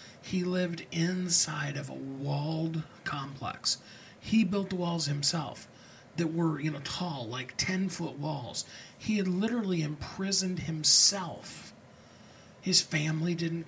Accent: American